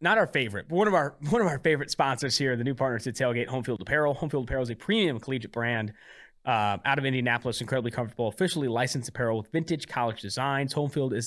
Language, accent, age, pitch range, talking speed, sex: English, American, 20-39, 125-170 Hz, 225 wpm, male